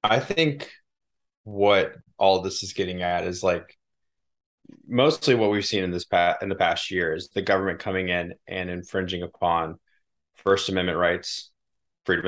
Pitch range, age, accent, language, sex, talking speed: 85-95 Hz, 20-39, American, English, male, 165 wpm